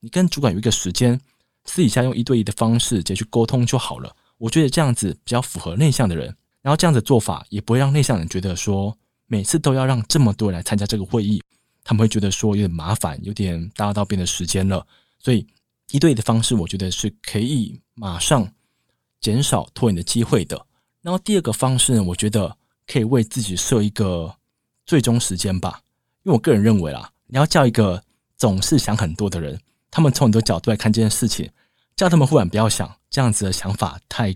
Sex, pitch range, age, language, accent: male, 100-125 Hz, 20-39, Chinese, native